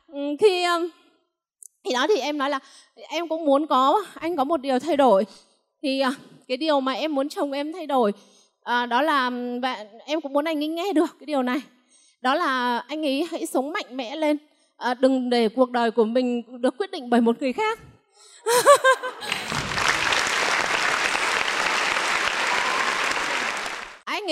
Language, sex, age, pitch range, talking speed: Vietnamese, female, 20-39, 255-330 Hz, 160 wpm